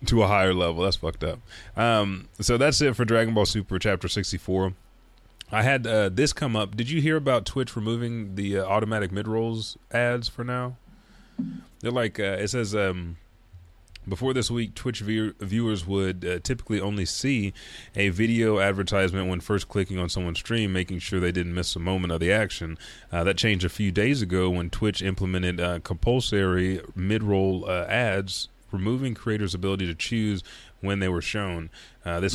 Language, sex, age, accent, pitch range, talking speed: English, male, 30-49, American, 90-110 Hz, 185 wpm